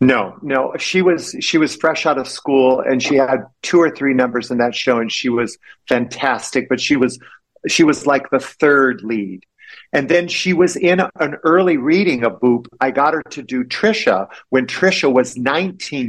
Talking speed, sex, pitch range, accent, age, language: 200 wpm, male, 125-155 Hz, American, 50-69, English